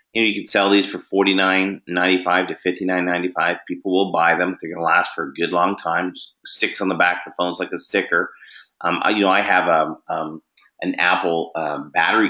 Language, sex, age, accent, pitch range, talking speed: English, male, 30-49, American, 90-100 Hz, 250 wpm